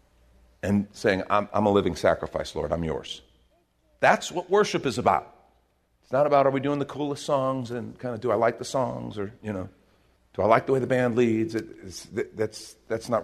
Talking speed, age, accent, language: 220 wpm, 50-69, American, English